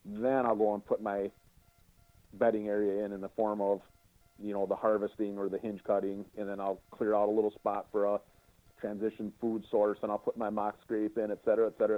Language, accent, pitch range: English, American, 100-120 Hz